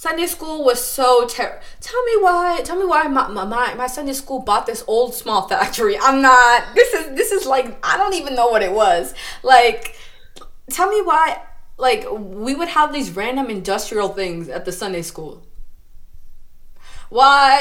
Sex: female